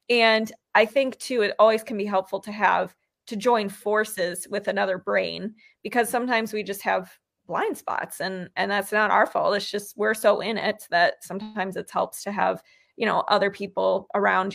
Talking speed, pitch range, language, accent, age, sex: 195 wpm, 200-240 Hz, English, American, 20-39, female